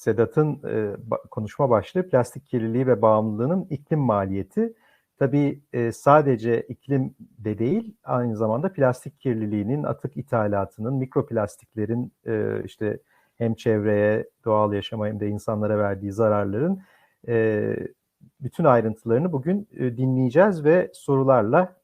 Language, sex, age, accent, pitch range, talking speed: Turkish, male, 50-69, native, 110-140 Hz, 115 wpm